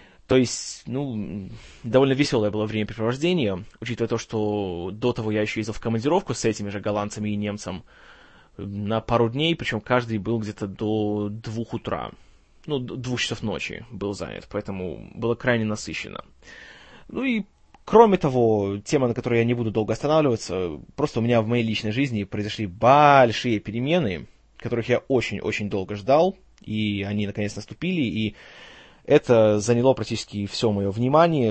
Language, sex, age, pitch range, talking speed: Russian, male, 20-39, 105-130 Hz, 155 wpm